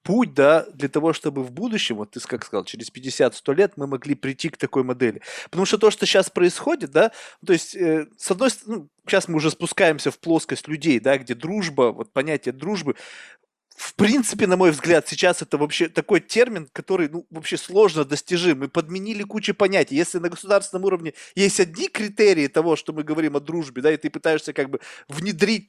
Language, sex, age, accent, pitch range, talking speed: Russian, male, 20-39, native, 155-205 Hz, 200 wpm